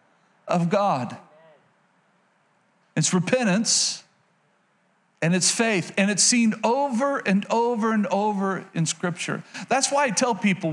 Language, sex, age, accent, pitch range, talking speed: English, male, 50-69, American, 195-255 Hz, 125 wpm